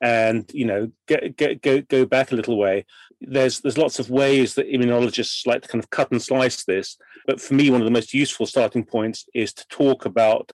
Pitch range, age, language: 115-135 Hz, 40-59, English